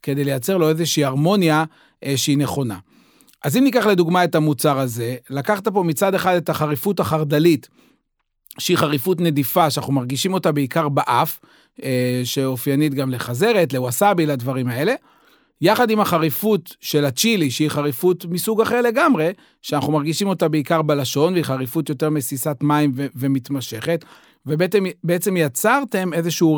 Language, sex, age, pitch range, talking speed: Hebrew, male, 40-59, 140-175 Hz, 140 wpm